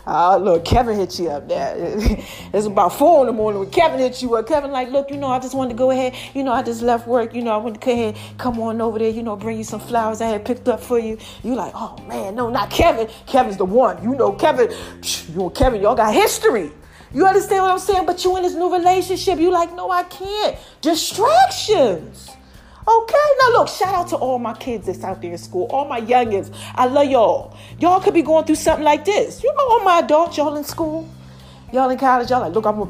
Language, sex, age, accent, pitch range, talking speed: English, female, 40-59, American, 225-330 Hz, 250 wpm